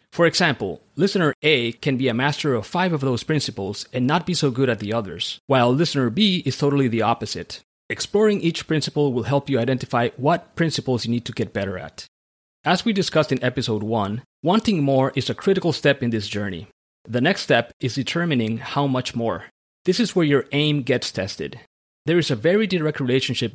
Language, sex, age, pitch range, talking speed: English, male, 30-49, 120-155 Hz, 200 wpm